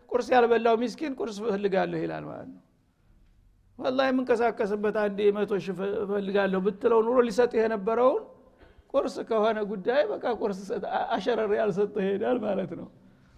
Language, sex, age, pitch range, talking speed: Amharic, male, 60-79, 200-245 Hz, 130 wpm